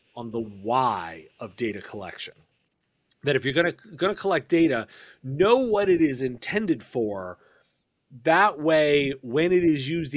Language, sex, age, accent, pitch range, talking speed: English, male, 40-59, American, 120-155 Hz, 160 wpm